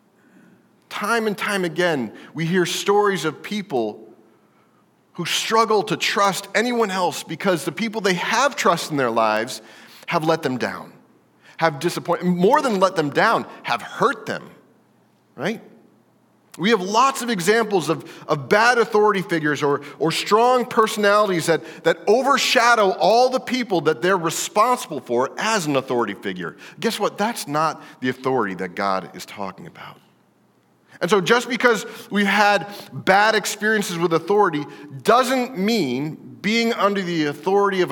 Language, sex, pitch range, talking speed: English, male, 150-210 Hz, 150 wpm